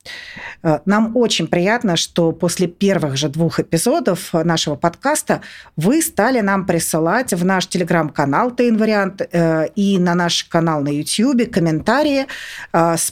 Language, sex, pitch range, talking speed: Russian, female, 165-220 Hz, 125 wpm